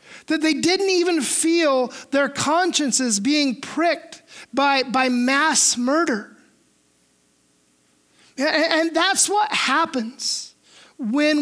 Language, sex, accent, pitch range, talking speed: English, male, American, 255-320 Hz, 100 wpm